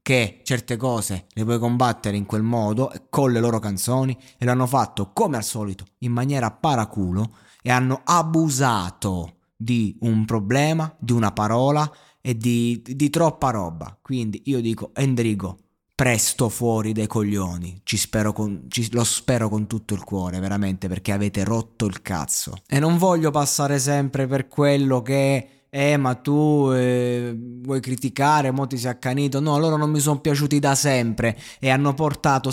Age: 20-39